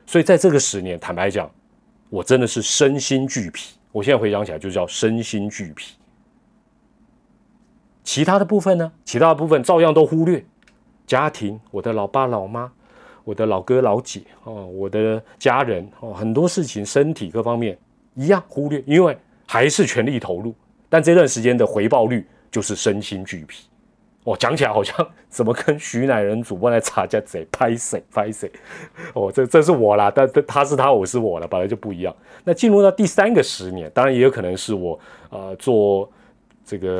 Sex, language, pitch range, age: male, Chinese, 100-165 Hz, 30-49